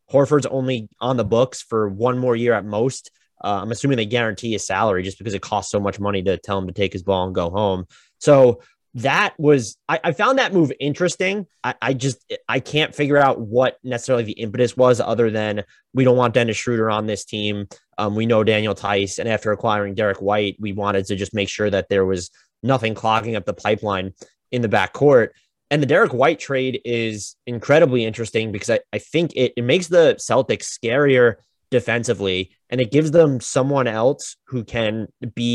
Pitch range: 105-130 Hz